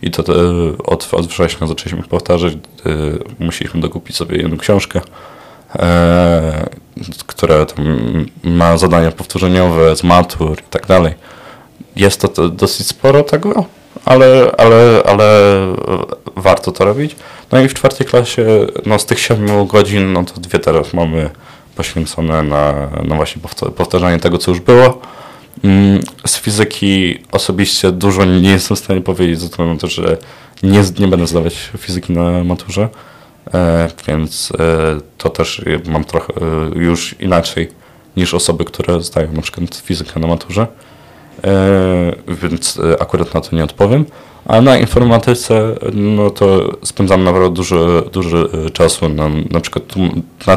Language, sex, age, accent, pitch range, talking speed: Polish, male, 20-39, native, 85-100 Hz, 135 wpm